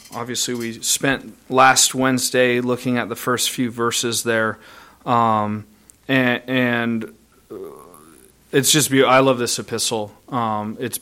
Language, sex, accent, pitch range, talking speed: English, male, American, 115-130 Hz, 130 wpm